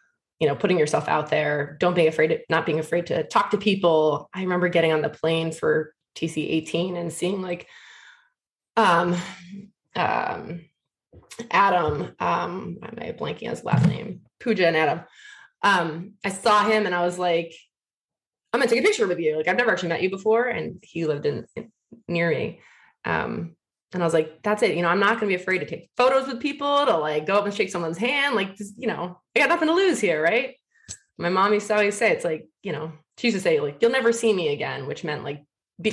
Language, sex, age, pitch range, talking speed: English, female, 20-39, 160-215 Hz, 220 wpm